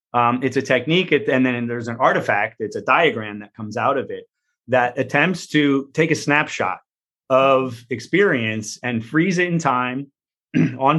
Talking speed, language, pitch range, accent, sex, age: 170 wpm, English, 120-150 Hz, American, male, 30-49